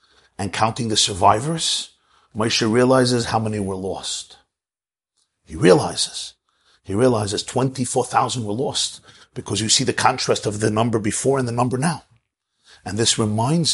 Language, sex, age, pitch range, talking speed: English, male, 50-69, 115-155 Hz, 145 wpm